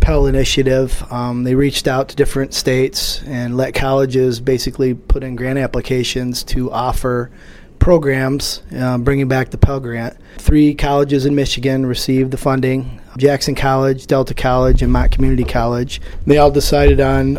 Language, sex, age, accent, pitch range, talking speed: English, male, 30-49, American, 125-140 Hz, 150 wpm